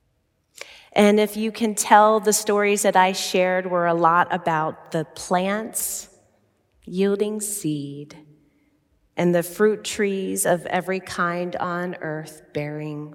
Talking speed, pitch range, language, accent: 130 wpm, 150-185 Hz, English, American